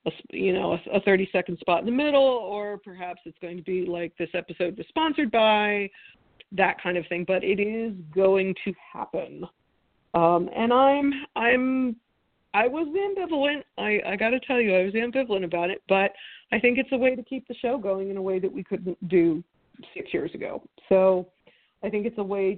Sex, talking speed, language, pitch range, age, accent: female, 200 wpm, English, 185-230 Hz, 40-59, American